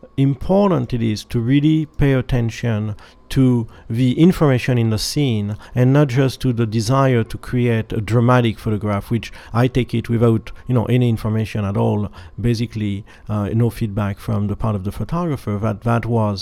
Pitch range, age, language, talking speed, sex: 105-135 Hz, 50-69, English, 175 wpm, male